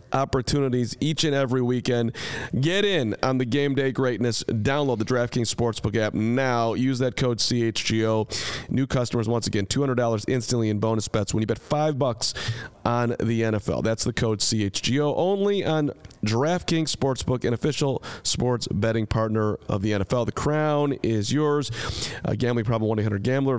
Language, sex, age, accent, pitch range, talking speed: English, male, 40-59, American, 110-135 Hz, 165 wpm